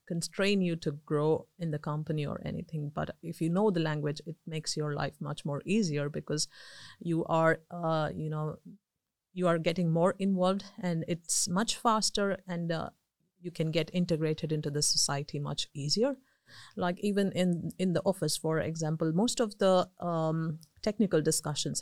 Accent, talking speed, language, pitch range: Indian, 170 wpm, Finnish, 155-180 Hz